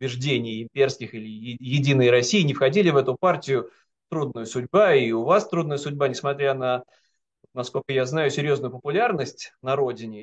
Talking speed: 145 wpm